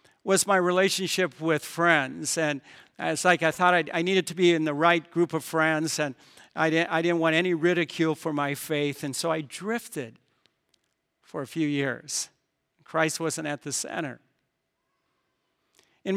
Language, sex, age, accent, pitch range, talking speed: English, male, 50-69, American, 160-195 Hz, 170 wpm